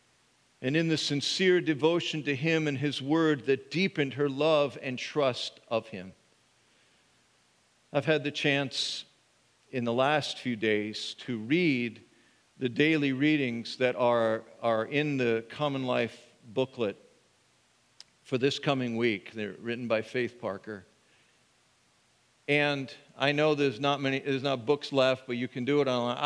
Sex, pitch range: male, 125-180 Hz